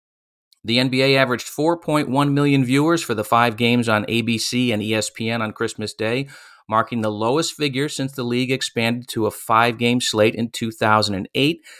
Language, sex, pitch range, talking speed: English, male, 100-125 Hz, 160 wpm